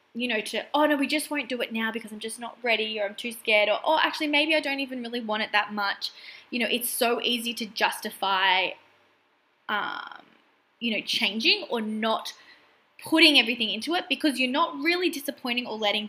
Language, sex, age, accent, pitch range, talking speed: English, female, 20-39, Australian, 210-280 Hz, 210 wpm